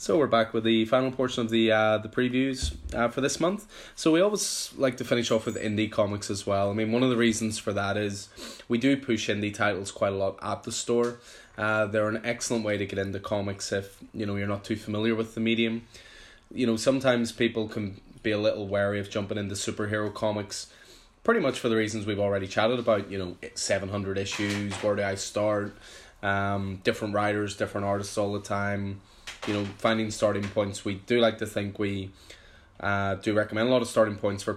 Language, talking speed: English, 220 wpm